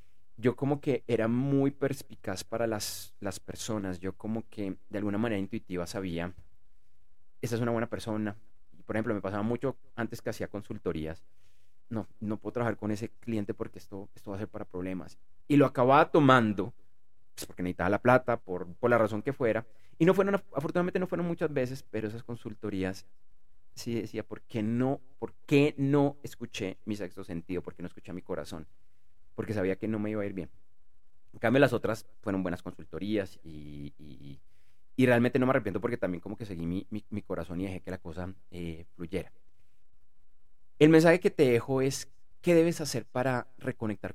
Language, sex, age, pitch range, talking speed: Spanish, male, 30-49, 90-115 Hz, 195 wpm